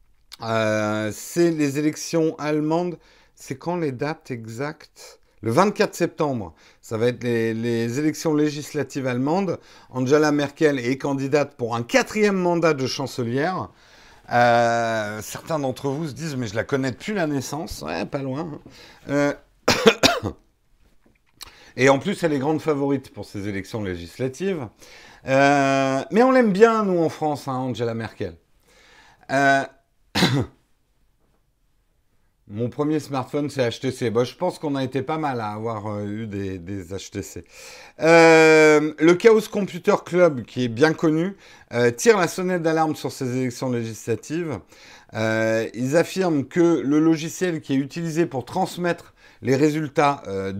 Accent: French